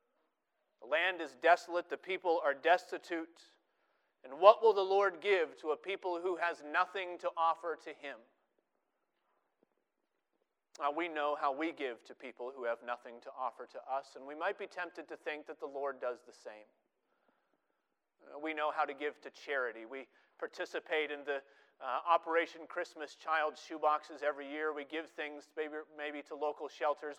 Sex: male